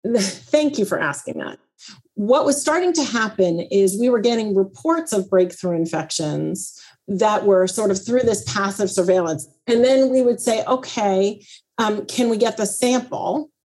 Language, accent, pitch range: English, American, 180-230 Hz